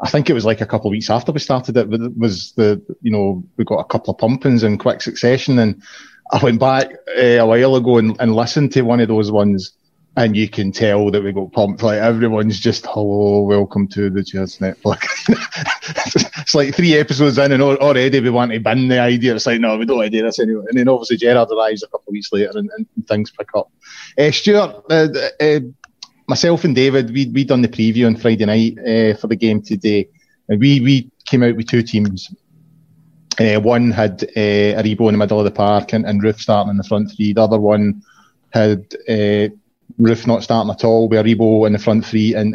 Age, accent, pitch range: 30-49, British, 110-135 Hz